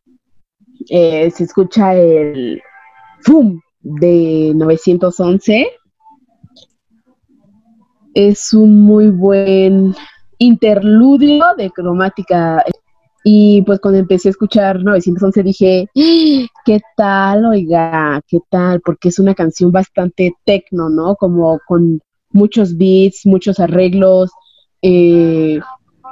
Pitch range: 185-220 Hz